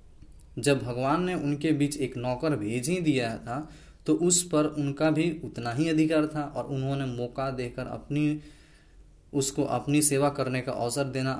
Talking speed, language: 170 wpm, Hindi